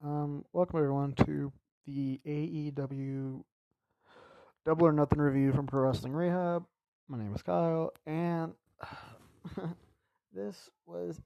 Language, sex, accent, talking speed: English, male, American, 110 wpm